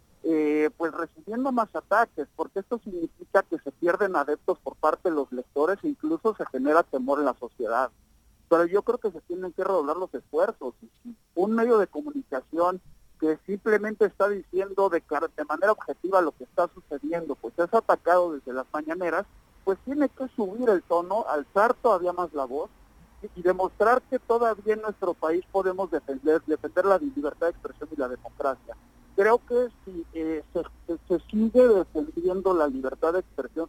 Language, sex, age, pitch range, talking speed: English, male, 50-69, 155-215 Hz, 175 wpm